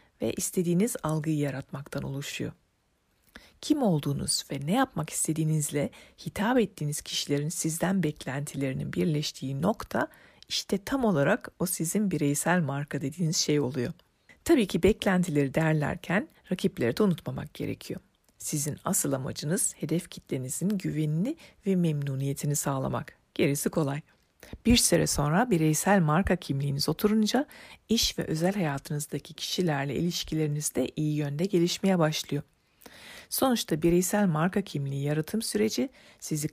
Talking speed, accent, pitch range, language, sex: 120 wpm, native, 145-195 Hz, Turkish, female